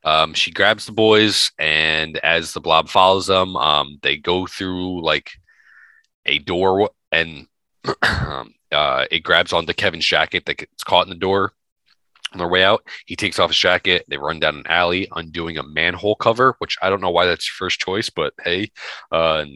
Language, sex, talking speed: English, male, 195 wpm